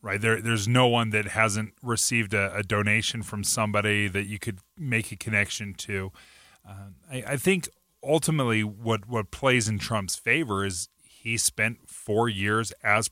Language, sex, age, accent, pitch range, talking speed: English, male, 30-49, American, 100-120 Hz, 170 wpm